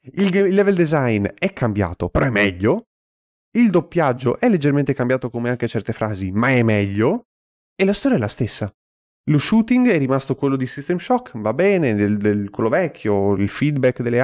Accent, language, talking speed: native, Italian, 180 wpm